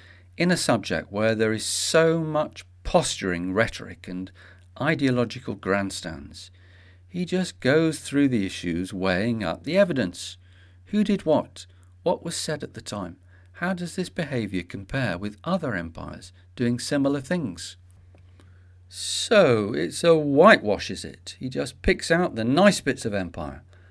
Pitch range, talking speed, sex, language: 90-120 Hz, 145 wpm, male, English